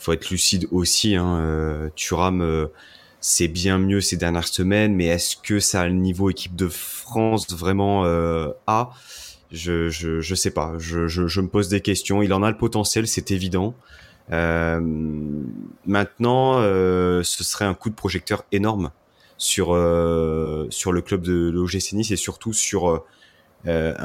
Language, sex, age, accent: French, male, 30-49, French